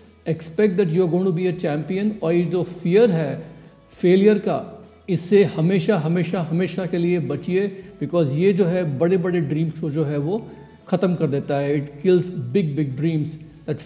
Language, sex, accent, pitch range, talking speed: Hindi, male, native, 150-180 Hz, 185 wpm